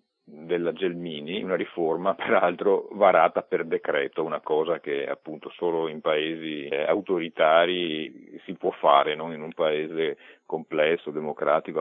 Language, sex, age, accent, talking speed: Italian, male, 50-69, native, 130 wpm